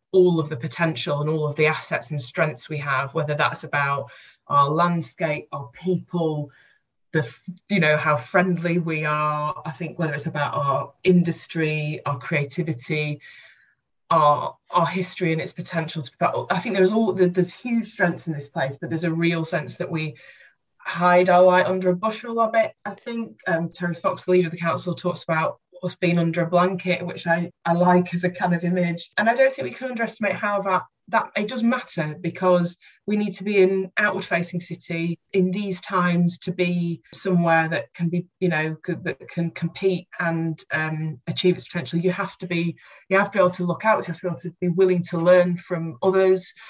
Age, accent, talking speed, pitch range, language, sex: 20-39, British, 205 wpm, 160-185 Hz, English, female